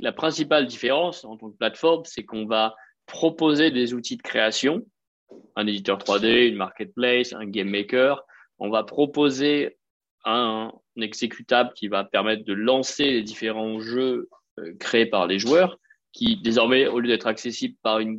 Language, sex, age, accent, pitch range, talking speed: French, male, 20-39, French, 110-145 Hz, 165 wpm